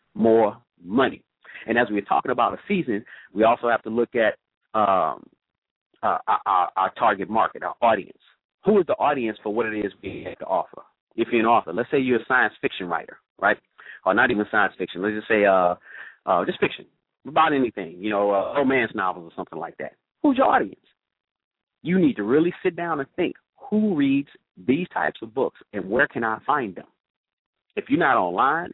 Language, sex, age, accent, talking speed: English, male, 40-59, American, 205 wpm